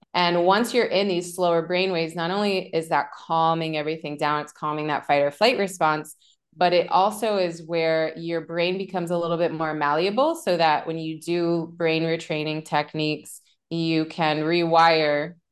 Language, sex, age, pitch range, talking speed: English, female, 20-39, 155-180 Hz, 180 wpm